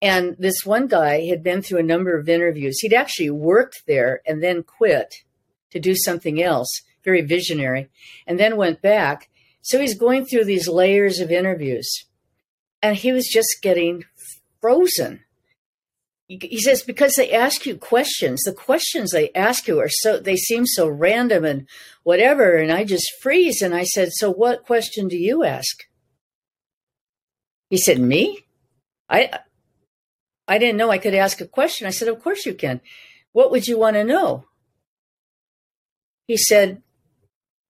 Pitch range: 175-240 Hz